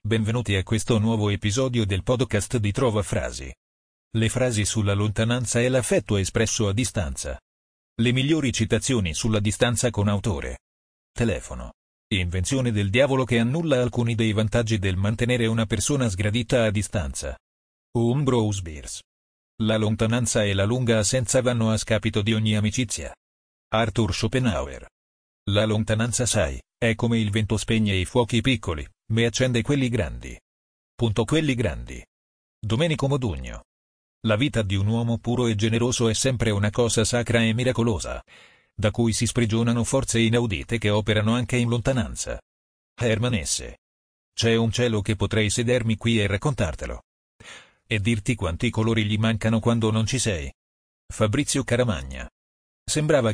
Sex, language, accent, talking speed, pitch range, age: male, Italian, native, 145 wpm, 100-120 Hz, 40-59